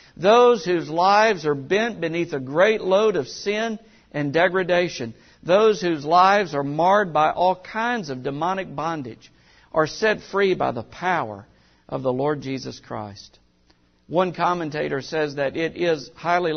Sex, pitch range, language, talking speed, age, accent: male, 145-195 Hz, English, 150 wpm, 60-79, American